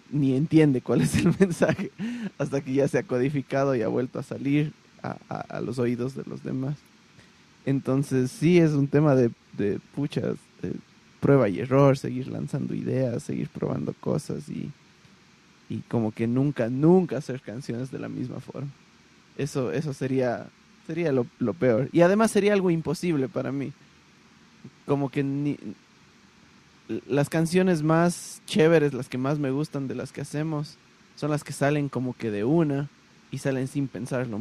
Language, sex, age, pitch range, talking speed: Spanish, male, 20-39, 130-155 Hz, 170 wpm